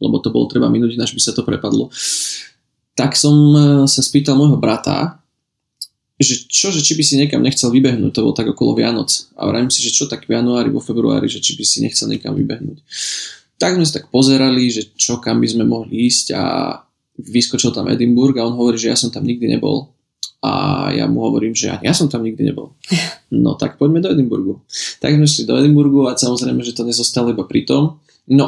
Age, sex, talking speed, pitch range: 20-39, male, 215 wpm, 115-140 Hz